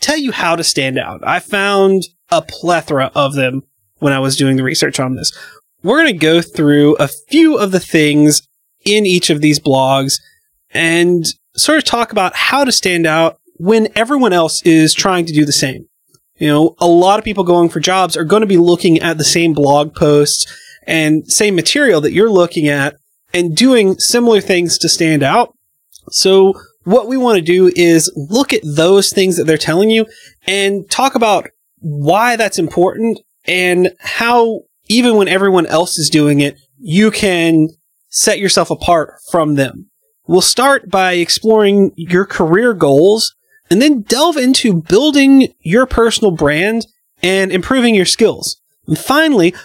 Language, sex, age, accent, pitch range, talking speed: English, male, 30-49, American, 155-220 Hz, 175 wpm